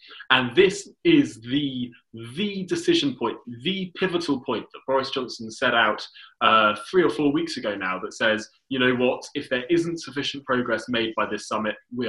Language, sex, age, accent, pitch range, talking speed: English, male, 20-39, British, 115-175 Hz, 185 wpm